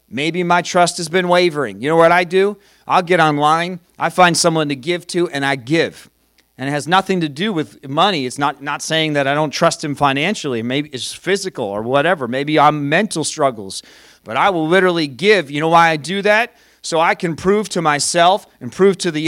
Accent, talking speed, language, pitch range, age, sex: American, 220 wpm, English, 155-200 Hz, 40-59, male